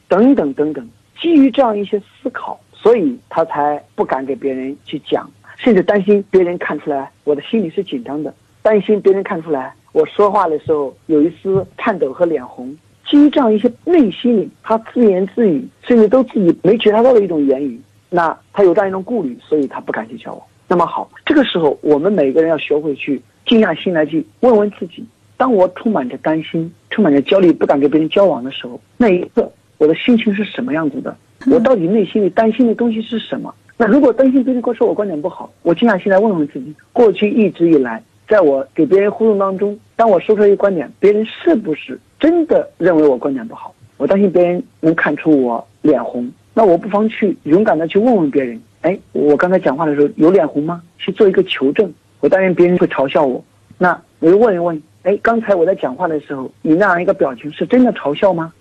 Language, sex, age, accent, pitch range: Chinese, male, 50-69, native, 150-225 Hz